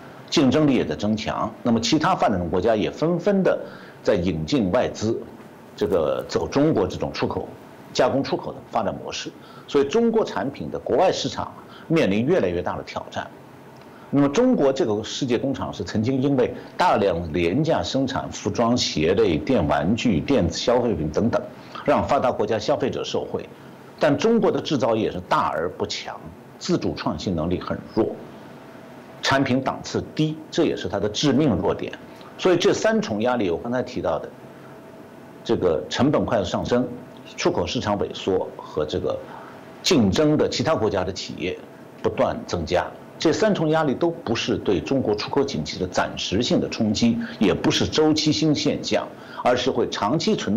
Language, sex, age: Chinese, male, 50-69